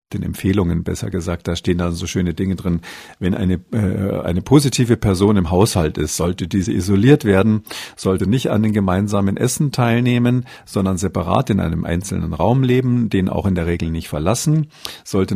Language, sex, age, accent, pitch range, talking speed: German, male, 50-69, German, 95-120 Hz, 180 wpm